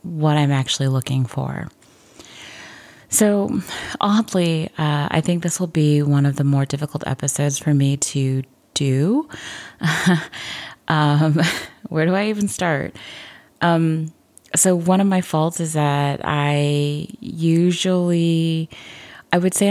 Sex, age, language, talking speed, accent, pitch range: female, 30-49, English, 130 wpm, American, 145-180 Hz